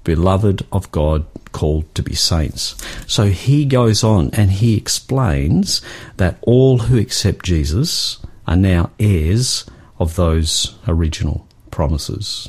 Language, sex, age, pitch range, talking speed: English, male, 50-69, 85-115 Hz, 125 wpm